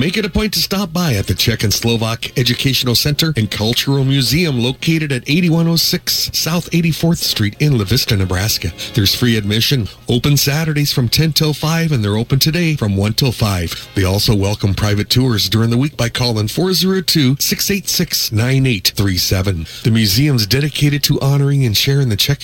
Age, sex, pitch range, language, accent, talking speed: 40-59, male, 110-150 Hz, English, American, 170 wpm